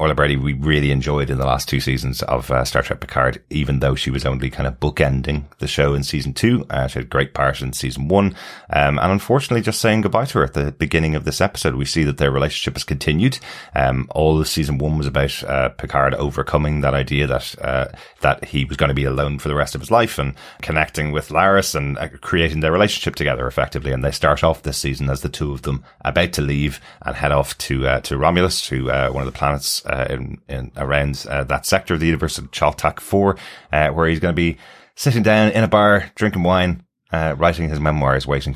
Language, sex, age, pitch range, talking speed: English, male, 30-49, 70-80 Hz, 235 wpm